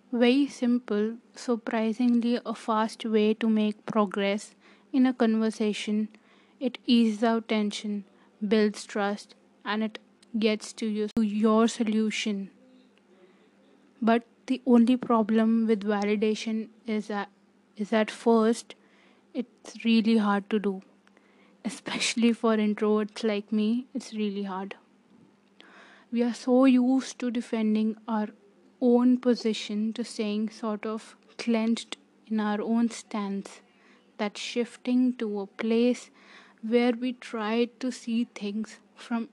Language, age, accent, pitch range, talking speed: English, 20-39, Indian, 215-235 Hz, 120 wpm